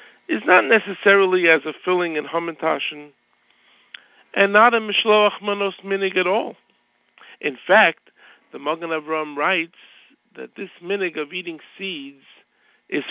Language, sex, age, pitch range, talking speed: English, male, 50-69, 155-210 Hz, 130 wpm